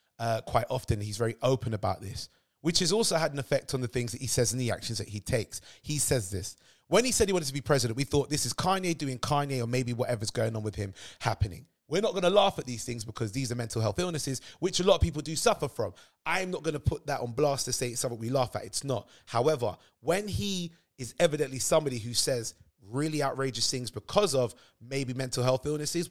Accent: British